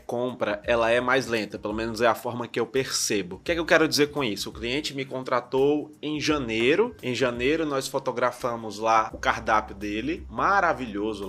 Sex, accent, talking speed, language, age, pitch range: male, Brazilian, 190 wpm, Portuguese, 20-39, 110-140 Hz